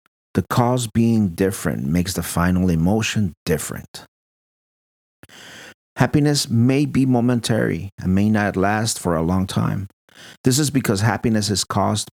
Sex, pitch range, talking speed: male, 90-115 Hz, 135 wpm